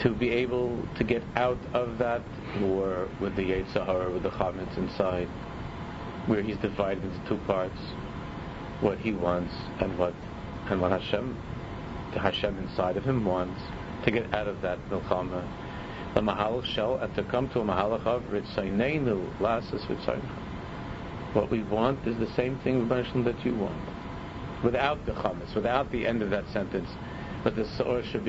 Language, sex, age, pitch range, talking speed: English, male, 50-69, 95-120 Hz, 160 wpm